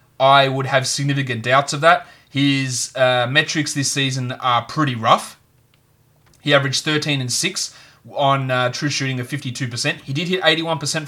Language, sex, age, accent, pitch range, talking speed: English, male, 30-49, Australian, 130-150 Hz, 160 wpm